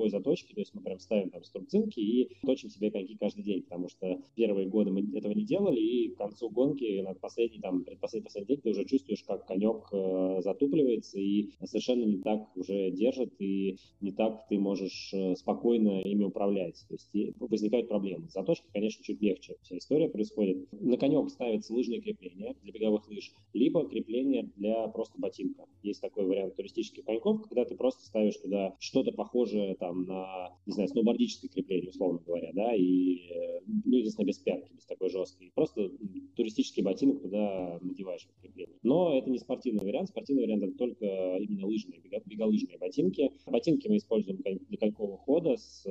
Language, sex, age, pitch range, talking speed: Russian, male, 20-39, 95-120 Hz, 175 wpm